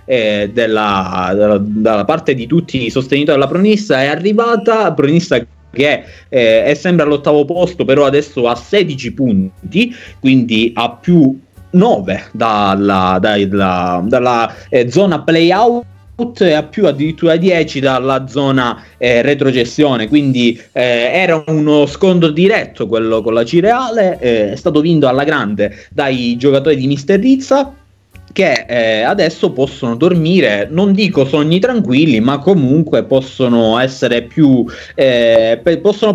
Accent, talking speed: native, 135 wpm